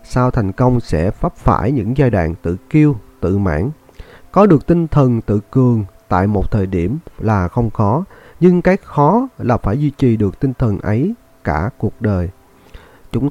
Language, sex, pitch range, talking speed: Vietnamese, male, 105-140 Hz, 185 wpm